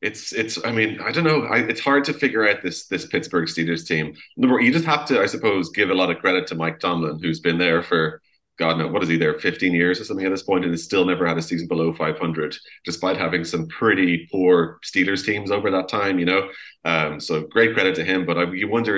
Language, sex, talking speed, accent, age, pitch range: English, male, 255 wpm, Irish, 20-39, 85-105 Hz